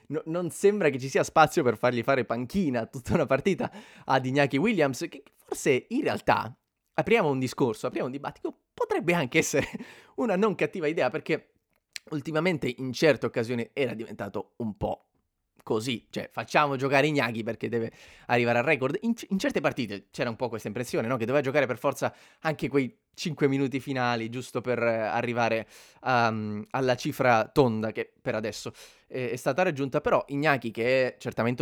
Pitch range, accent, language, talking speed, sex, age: 115-150 Hz, native, Italian, 175 wpm, male, 20-39